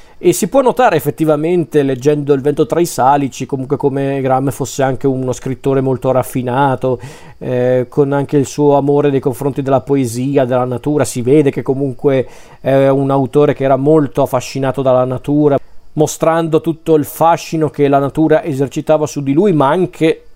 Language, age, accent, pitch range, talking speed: Italian, 40-59, native, 135-155 Hz, 170 wpm